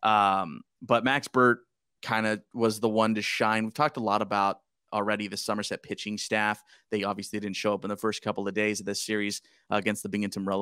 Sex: male